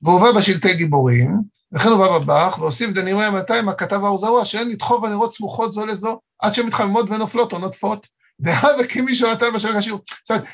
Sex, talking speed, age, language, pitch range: male, 180 wpm, 50-69, Hebrew, 180-225 Hz